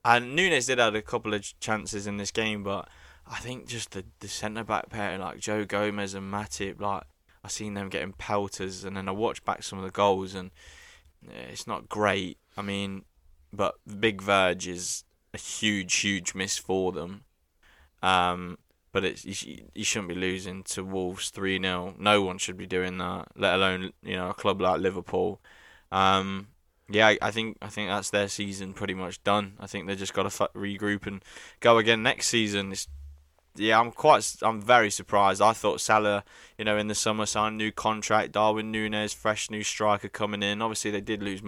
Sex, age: male, 20-39